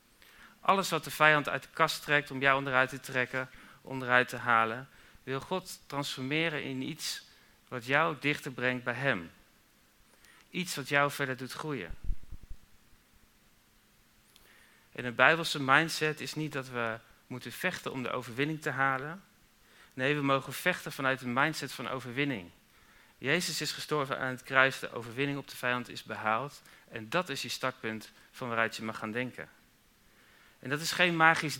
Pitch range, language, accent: 125-145 Hz, Dutch, Dutch